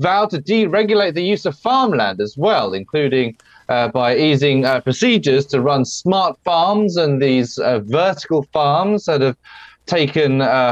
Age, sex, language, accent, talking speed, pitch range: 30-49, male, English, British, 155 wpm, 135-185 Hz